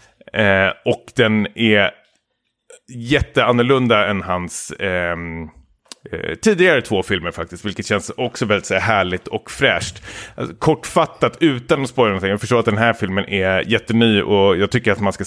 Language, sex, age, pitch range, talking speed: Swedish, male, 30-49, 95-120 Hz, 165 wpm